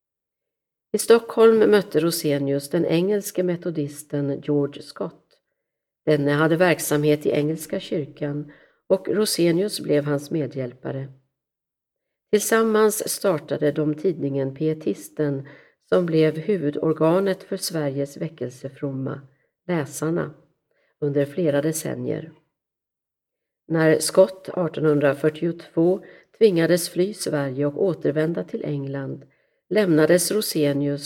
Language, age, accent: Swedish, 50-69, native